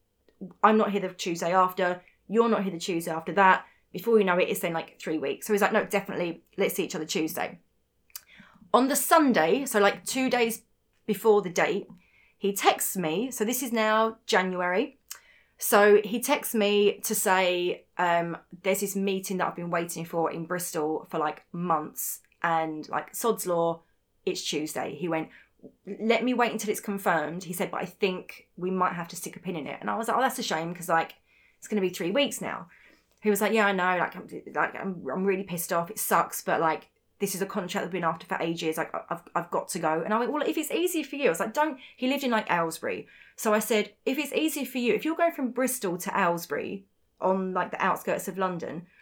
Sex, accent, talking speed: female, British, 230 wpm